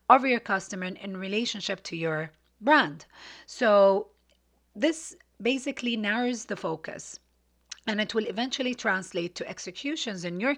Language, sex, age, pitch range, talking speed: English, female, 30-49, 170-235 Hz, 130 wpm